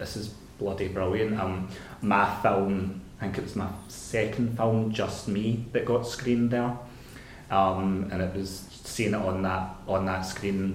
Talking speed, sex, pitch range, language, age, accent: 175 wpm, male, 95-110 Hz, English, 30-49, British